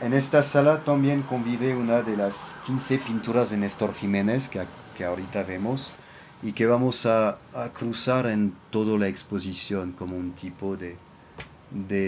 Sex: male